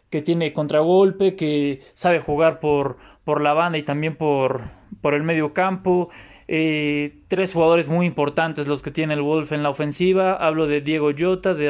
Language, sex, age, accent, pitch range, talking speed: Spanish, male, 20-39, Mexican, 145-175 Hz, 175 wpm